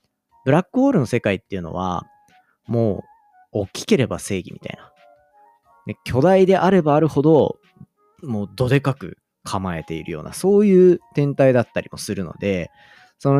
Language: Japanese